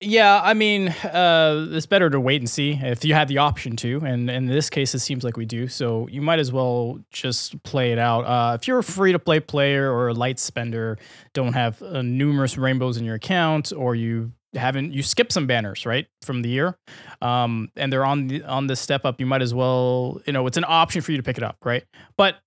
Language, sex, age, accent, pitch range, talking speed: English, male, 20-39, American, 125-155 Hz, 240 wpm